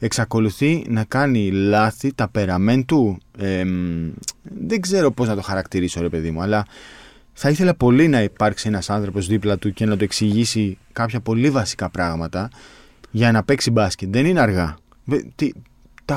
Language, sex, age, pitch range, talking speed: Greek, male, 20-39, 105-135 Hz, 160 wpm